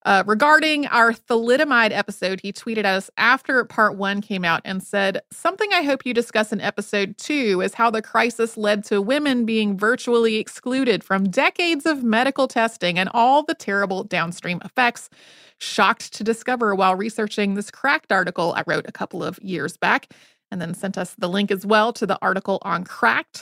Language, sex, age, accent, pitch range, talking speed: English, female, 30-49, American, 205-265 Hz, 185 wpm